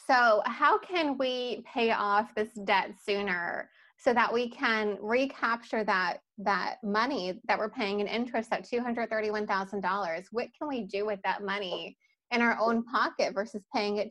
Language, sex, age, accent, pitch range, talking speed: English, female, 20-39, American, 195-235 Hz, 160 wpm